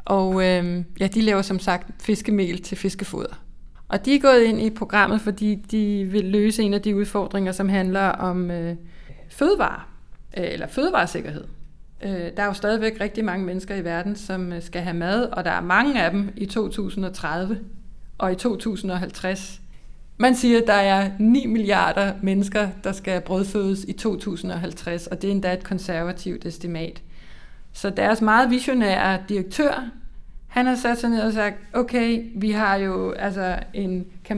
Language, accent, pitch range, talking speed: Danish, native, 180-215 Hz, 160 wpm